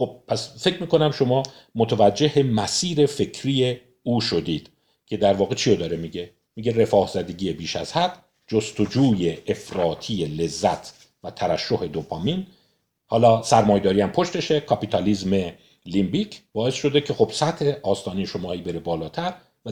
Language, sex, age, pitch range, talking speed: Persian, male, 50-69, 105-150 Hz, 130 wpm